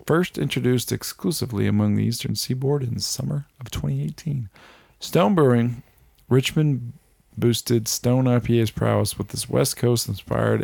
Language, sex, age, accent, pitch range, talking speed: English, male, 40-59, American, 115-145 Hz, 130 wpm